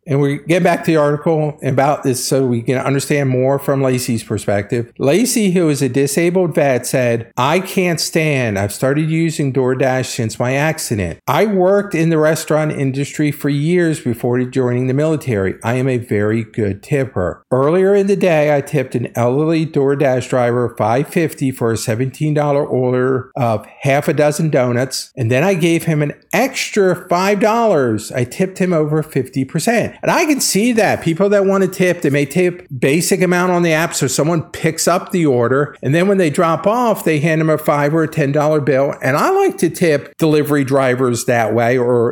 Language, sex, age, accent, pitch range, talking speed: English, male, 50-69, American, 130-170 Hz, 195 wpm